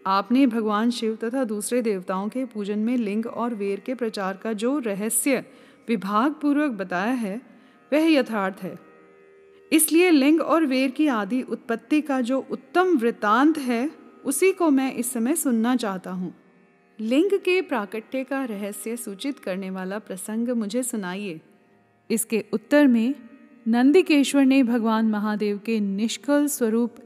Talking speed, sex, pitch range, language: 105 wpm, female, 215-265 Hz, Hindi